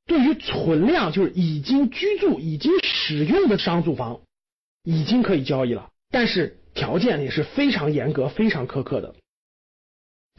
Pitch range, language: 155-250 Hz, Chinese